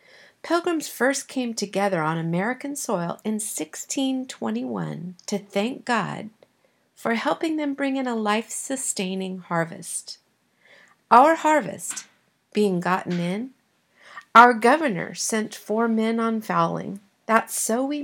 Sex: female